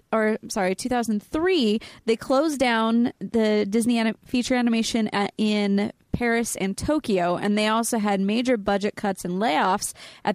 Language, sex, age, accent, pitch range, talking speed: English, female, 20-39, American, 210-275 Hz, 150 wpm